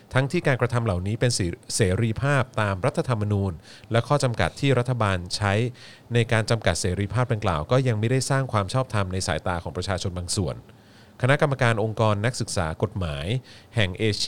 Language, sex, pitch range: Thai, male, 100-125 Hz